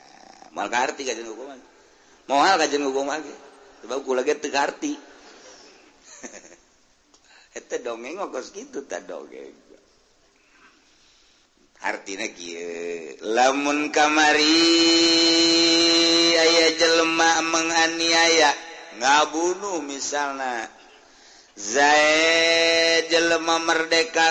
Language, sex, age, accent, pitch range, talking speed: Indonesian, male, 50-69, native, 120-165 Hz, 75 wpm